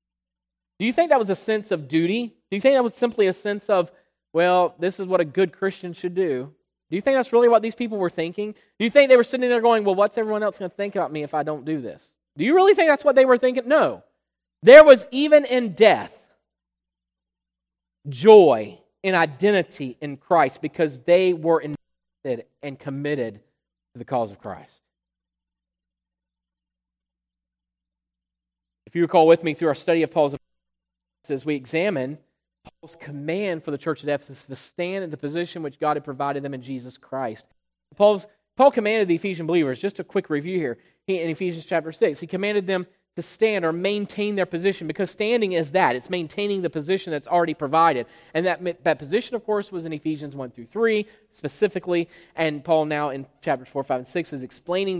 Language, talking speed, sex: English, 200 wpm, male